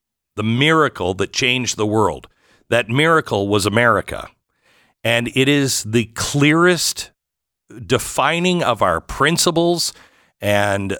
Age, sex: 50-69, male